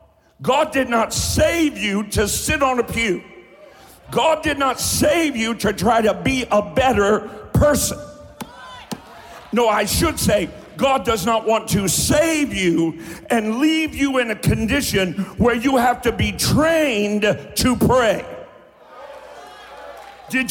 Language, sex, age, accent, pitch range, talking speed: English, male, 50-69, American, 215-300 Hz, 140 wpm